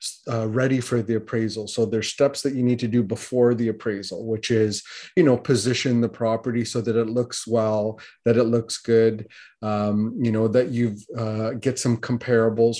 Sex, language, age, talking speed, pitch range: male, English, 30-49, 190 wpm, 110-120 Hz